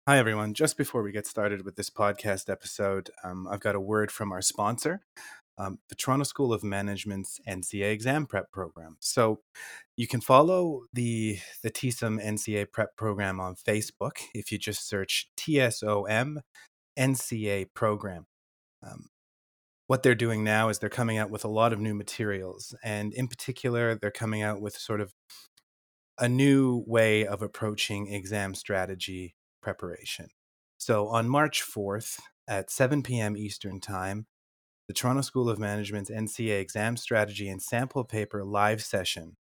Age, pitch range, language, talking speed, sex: 30-49, 100-120 Hz, English, 155 wpm, male